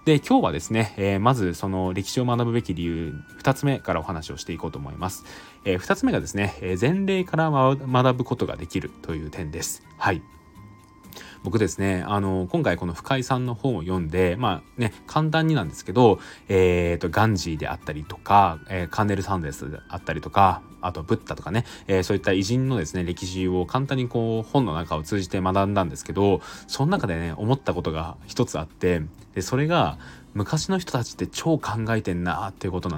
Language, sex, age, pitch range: Japanese, male, 20-39, 85-120 Hz